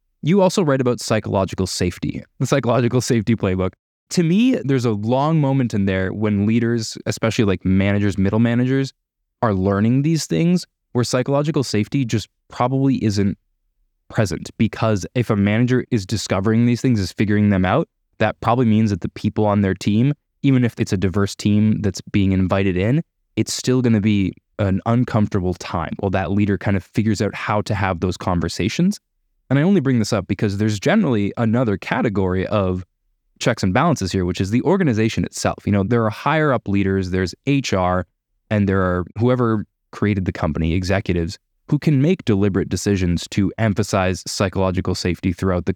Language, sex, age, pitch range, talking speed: English, male, 20-39, 95-120 Hz, 180 wpm